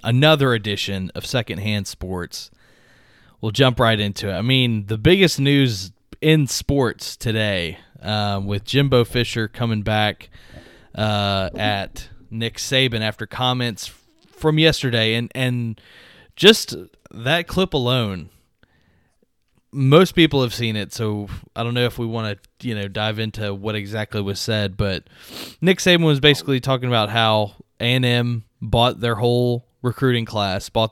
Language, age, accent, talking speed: English, 20-39, American, 145 wpm